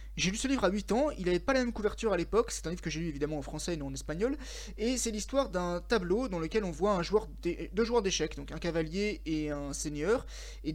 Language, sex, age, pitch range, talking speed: French, male, 20-39, 155-210 Hz, 280 wpm